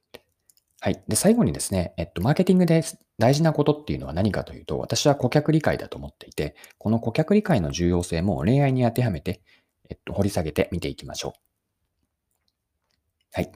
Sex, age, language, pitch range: male, 40-59, Japanese, 85-130 Hz